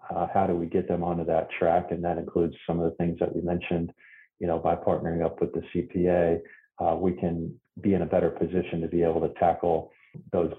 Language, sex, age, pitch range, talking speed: English, male, 30-49, 85-95 Hz, 230 wpm